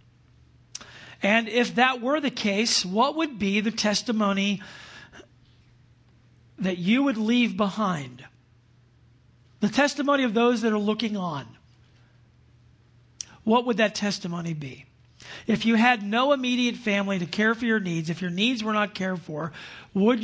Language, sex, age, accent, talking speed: English, male, 50-69, American, 140 wpm